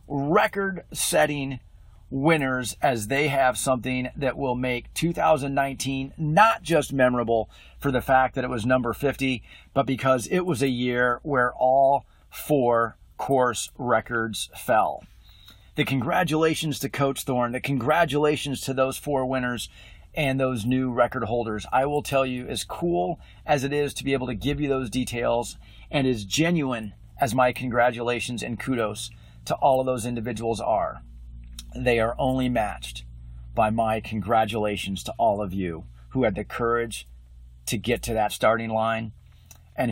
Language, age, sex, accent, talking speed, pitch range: English, 40-59, male, American, 155 wpm, 115-140 Hz